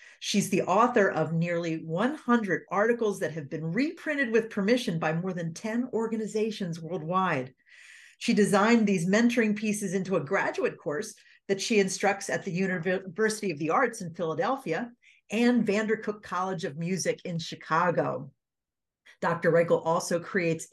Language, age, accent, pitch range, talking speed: English, 50-69, American, 165-235 Hz, 145 wpm